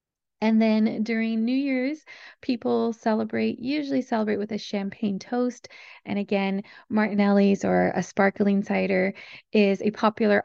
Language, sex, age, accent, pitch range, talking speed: English, female, 20-39, American, 200-225 Hz, 130 wpm